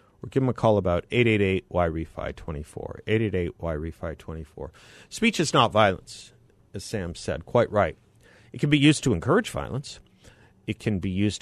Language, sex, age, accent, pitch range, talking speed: English, male, 50-69, American, 95-115 Hz, 140 wpm